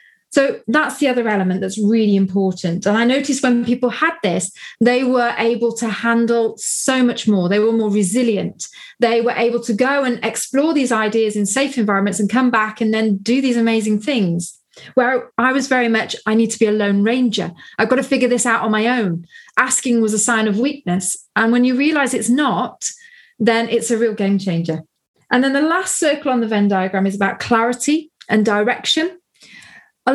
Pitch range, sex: 210-255 Hz, female